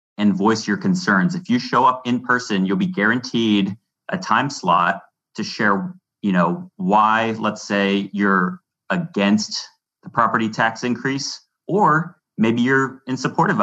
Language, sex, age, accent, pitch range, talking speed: English, male, 30-49, American, 100-125 Hz, 150 wpm